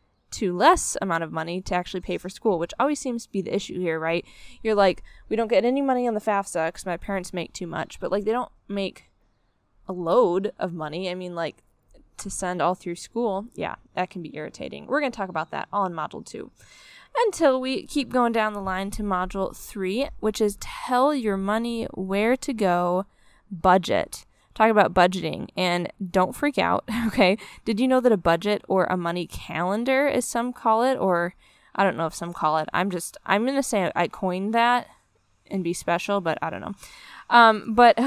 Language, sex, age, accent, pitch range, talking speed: English, female, 10-29, American, 180-235 Hz, 210 wpm